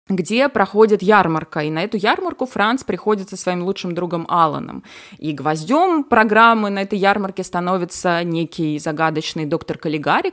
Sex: female